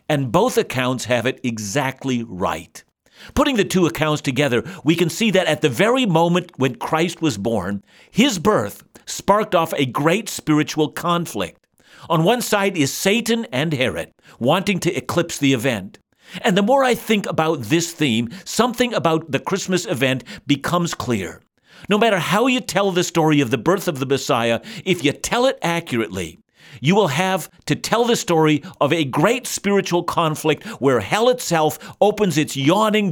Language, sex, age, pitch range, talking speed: English, male, 50-69, 135-195 Hz, 170 wpm